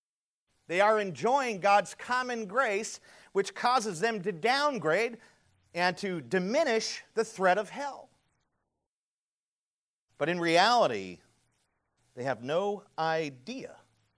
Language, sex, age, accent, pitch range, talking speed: English, male, 40-59, American, 145-230 Hz, 105 wpm